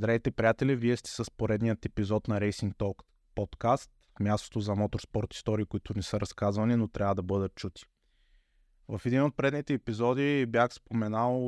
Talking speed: 165 wpm